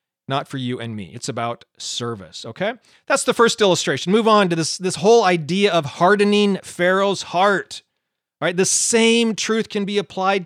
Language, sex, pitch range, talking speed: English, male, 155-220 Hz, 180 wpm